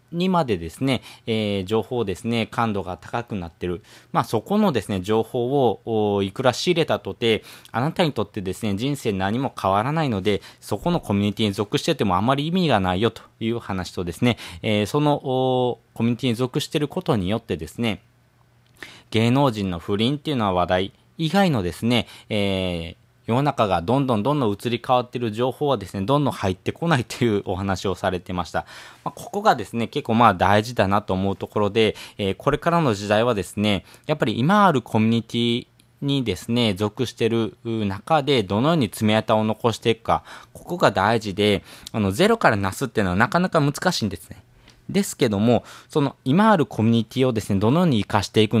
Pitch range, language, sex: 100-130 Hz, Japanese, male